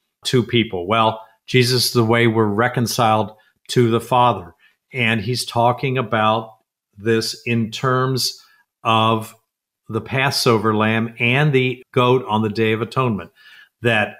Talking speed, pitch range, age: 130 wpm, 115-135 Hz, 50-69